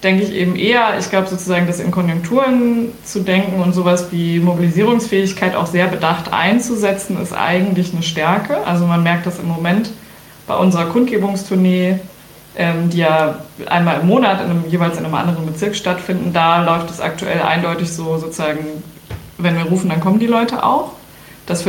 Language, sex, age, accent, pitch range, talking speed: German, female, 20-39, German, 170-205 Hz, 165 wpm